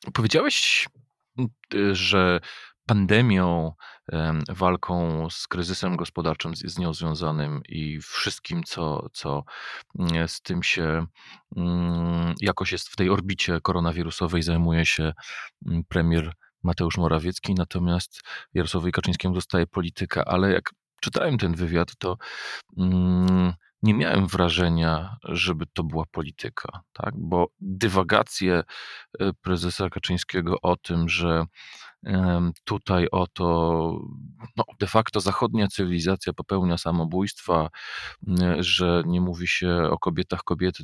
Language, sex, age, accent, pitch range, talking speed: Polish, male, 40-59, native, 85-95 Hz, 105 wpm